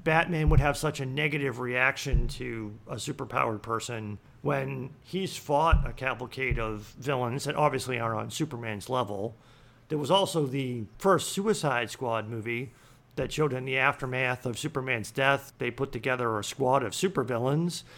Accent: American